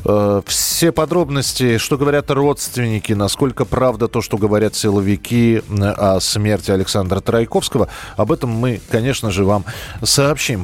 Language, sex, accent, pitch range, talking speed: Russian, male, native, 110-145 Hz, 125 wpm